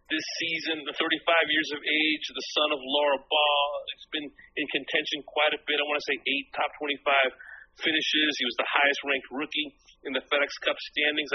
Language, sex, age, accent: English, male, 40-59, American